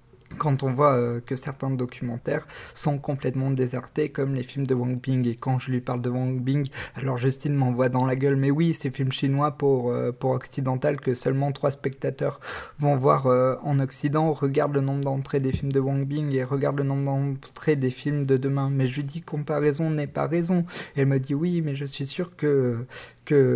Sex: male